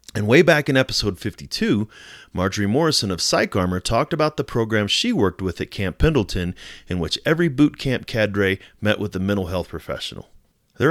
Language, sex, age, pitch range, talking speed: English, male, 30-49, 90-125 Hz, 180 wpm